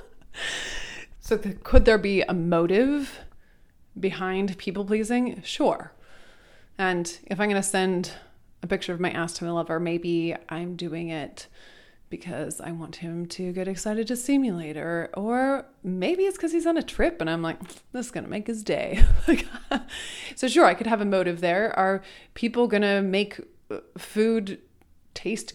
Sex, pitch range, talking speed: female, 170-220 Hz, 165 wpm